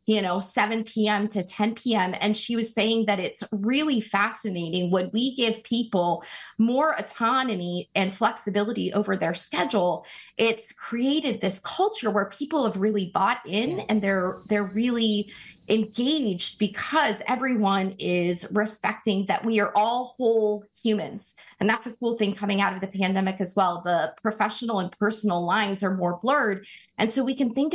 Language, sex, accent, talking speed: English, female, American, 165 wpm